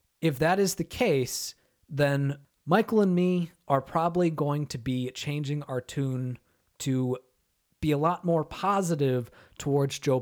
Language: English